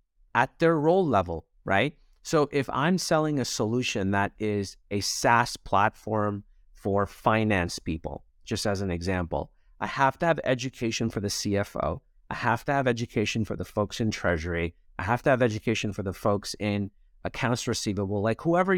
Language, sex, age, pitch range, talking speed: English, male, 30-49, 95-135 Hz, 175 wpm